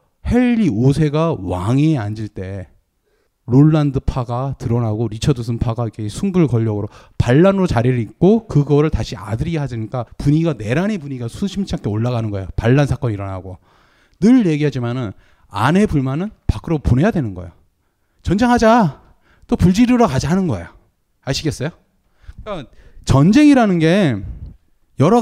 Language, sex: Korean, male